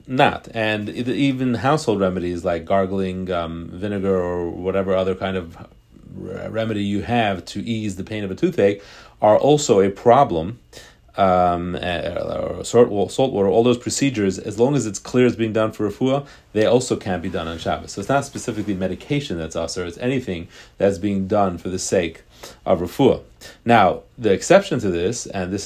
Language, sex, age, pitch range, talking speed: English, male, 40-59, 95-115 Hz, 180 wpm